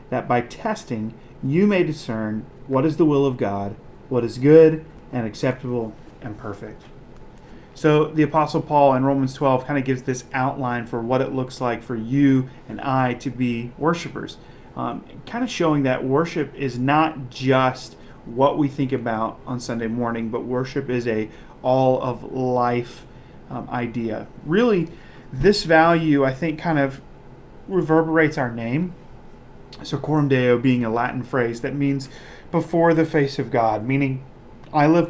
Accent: American